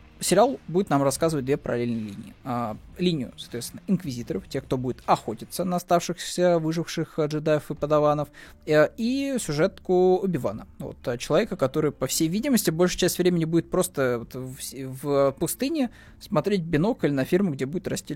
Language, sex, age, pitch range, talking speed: Russian, male, 20-39, 125-165 Hz, 140 wpm